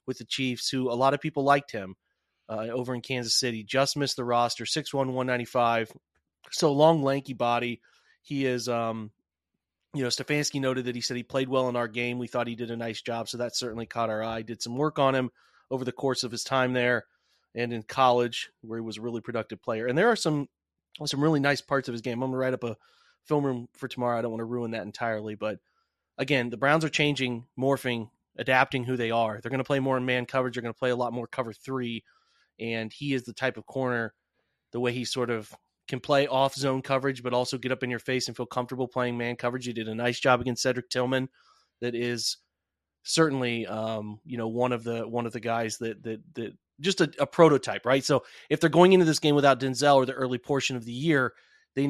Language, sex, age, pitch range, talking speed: English, male, 30-49, 120-135 Hz, 240 wpm